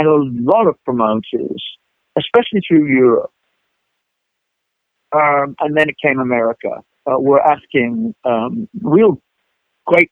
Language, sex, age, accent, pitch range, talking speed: English, male, 60-79, American, 125-150 Hz, 125 wpm